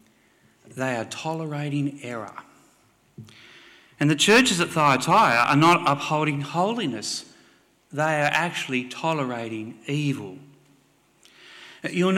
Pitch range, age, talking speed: 135-170 Hz, 40-59, 95 wpm